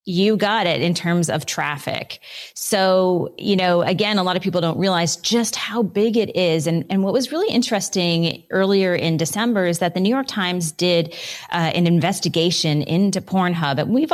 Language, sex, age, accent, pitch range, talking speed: English, female, 30-49, American, 155-195 Hz, 190 wpm